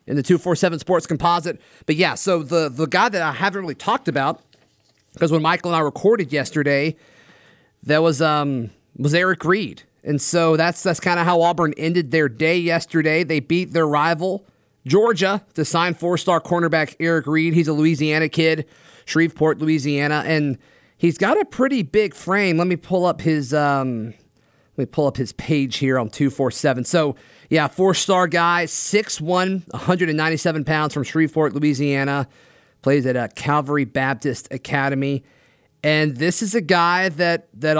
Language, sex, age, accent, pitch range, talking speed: English, male, 30-49, American, 145-175 Hz, 170 wpm